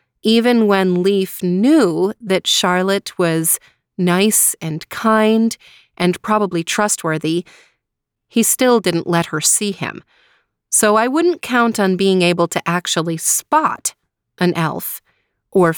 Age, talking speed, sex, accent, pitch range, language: 30-49, 125 wpm, female, American, 165-210 Hz, English